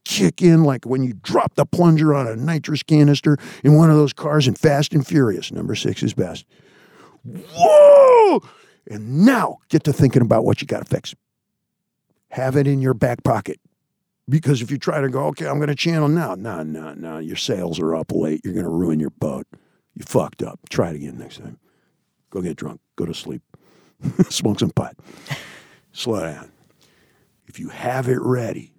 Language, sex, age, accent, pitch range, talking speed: English, male, 50-69, American, 100-150 Hz, 195 wpm